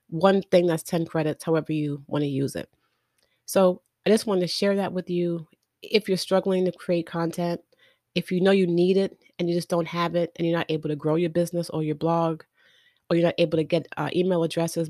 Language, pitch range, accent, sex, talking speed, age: English, 155-180 Hz, American, female, 235 wpm, 30-49